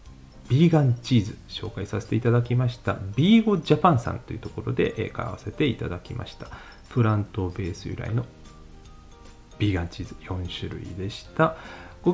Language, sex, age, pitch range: Japanese, male, 40-59, 95-135 Hz